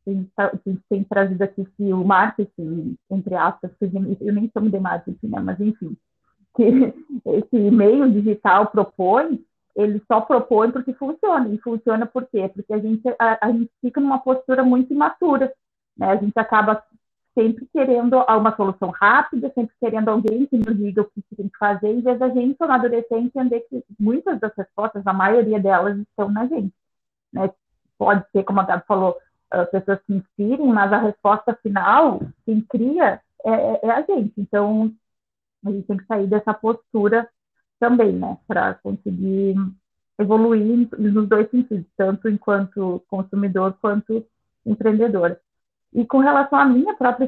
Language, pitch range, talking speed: Portuguese, 200-240 Hz, 165 wpm